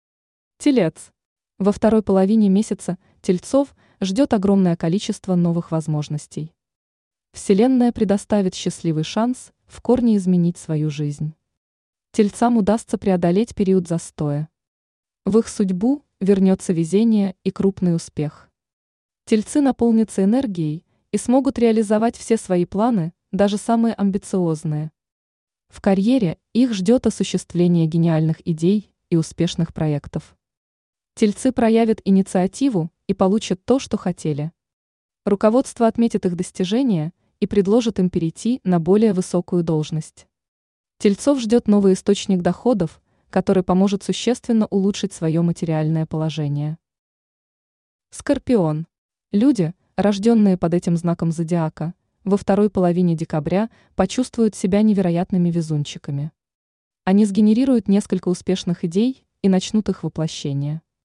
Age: 20-39